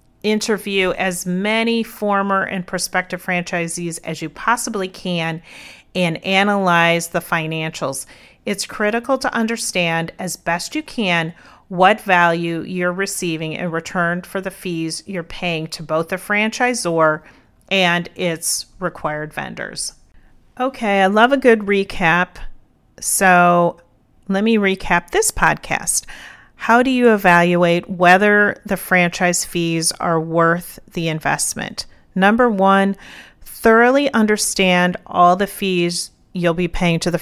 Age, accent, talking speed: 40-59, American, 125 wpm